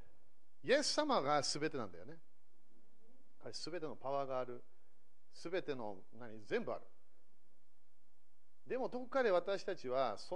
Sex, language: male, Japanese